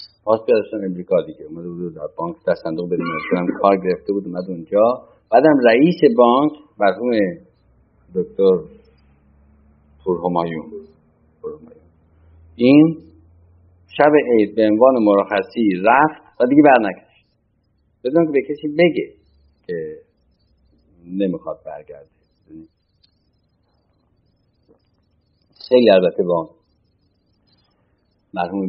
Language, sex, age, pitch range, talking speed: Persian, male, 50-69, 90-140 Hz, 95 wpm